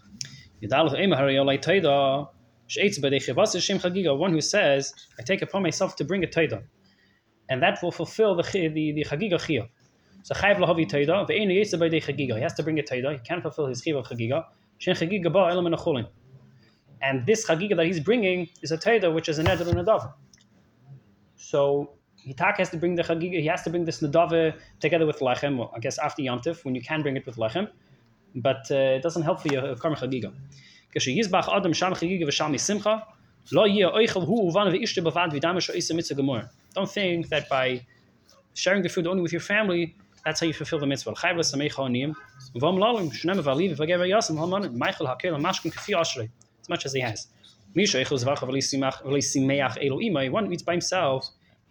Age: 20-39